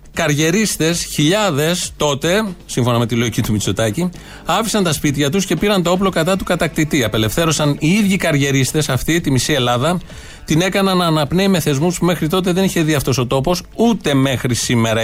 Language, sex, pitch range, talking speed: Greek, male, 125-185 Hz, 180 wpm